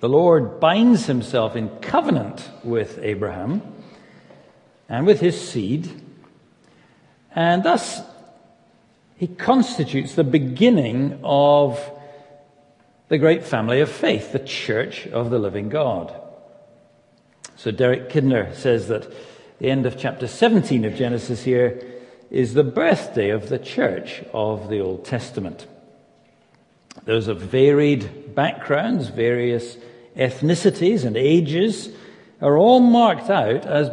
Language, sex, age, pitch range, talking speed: English, male, 60-79, 125-175 Hz, 115 wpm